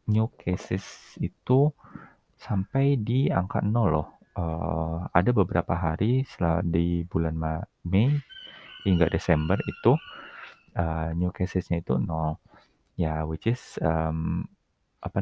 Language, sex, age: Indonesian, male, 30-49